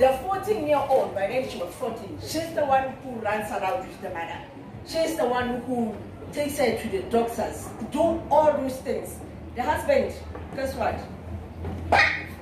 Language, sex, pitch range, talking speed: English, female, 235-340 Hz, 185 wpm